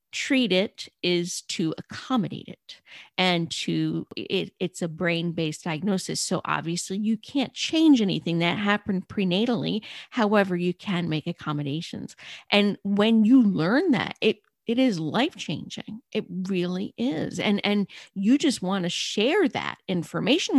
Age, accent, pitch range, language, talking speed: 50-69, American, 175-235 Hz, English, 140 wpm